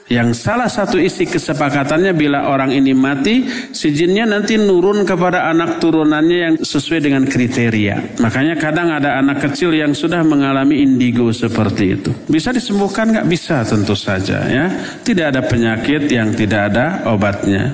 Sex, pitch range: male, 120-170 Hz